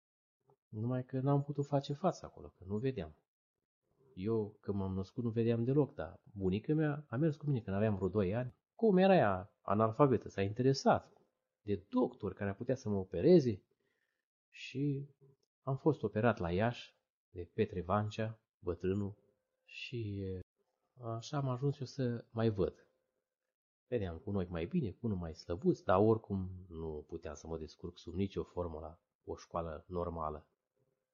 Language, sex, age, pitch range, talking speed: Romanian, male, 30-49, 95-135 Hz, 165 wpm